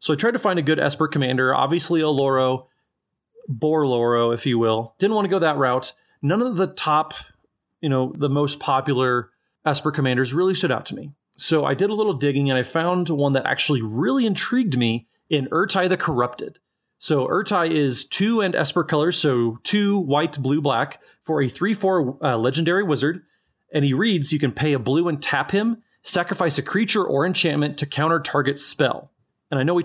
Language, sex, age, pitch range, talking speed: English, male, 30-49, 130-170 Hz, 200 wpm